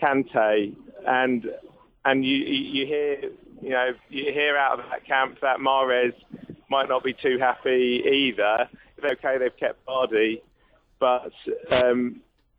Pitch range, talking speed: 125-145 Hz, 135 wpm